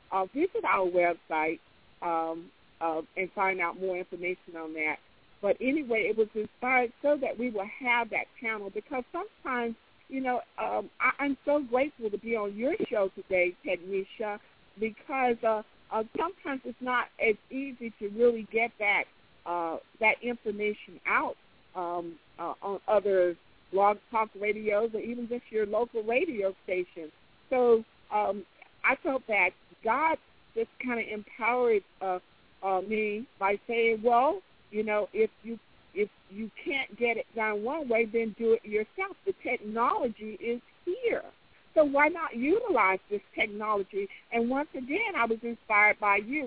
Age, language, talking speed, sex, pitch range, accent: 50-69, English, 160 wpm, female, 195-250 Hz, American